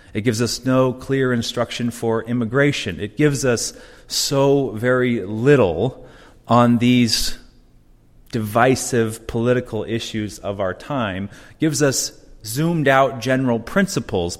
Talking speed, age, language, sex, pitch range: 120 wpm, 30-49, English, male, 105-130 Hz